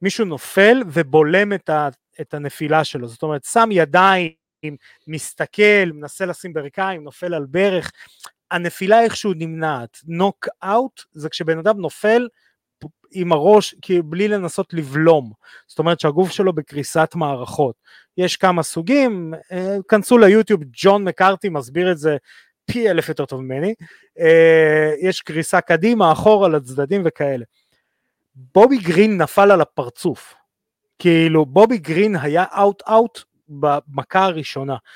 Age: 30-49